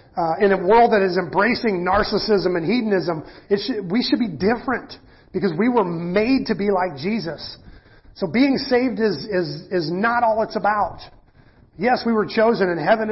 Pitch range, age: 170-215 Hz, 40-59